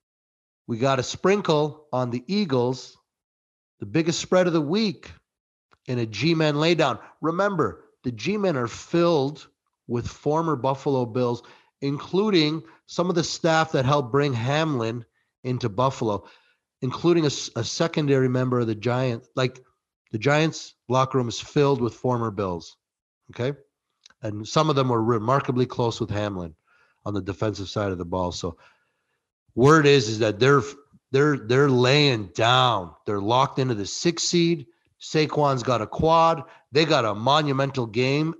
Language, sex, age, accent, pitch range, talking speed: English, male, 30-49, American, 110-160 Hz, 150 wpm